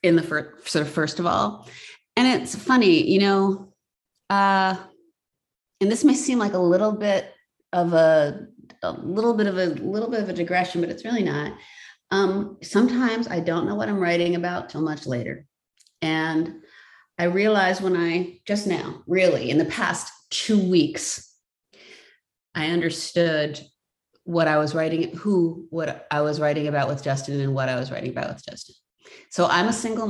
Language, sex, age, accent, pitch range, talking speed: English, female, 30-49, American, 155-200 Hz, 175 wpm